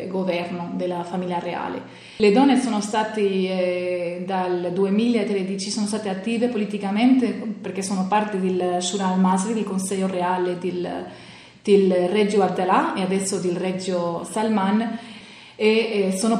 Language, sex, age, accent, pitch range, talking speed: Italian, female, 30-49, native, 185-220 Hz, 130 wpm